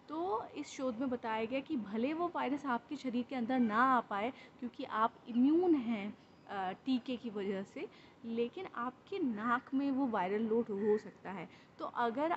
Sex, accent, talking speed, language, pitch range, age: female, native, 180 wpm, Hindi, 225-265 Hz, 20-39